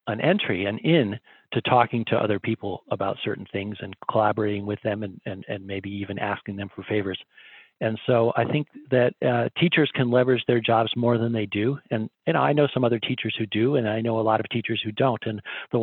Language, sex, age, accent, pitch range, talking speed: English, male, 50-69, American, 110-135 Hz, 230 wpm